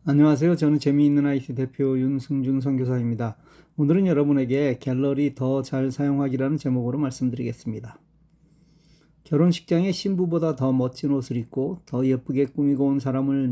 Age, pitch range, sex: 40-59, 130-165 Hz, male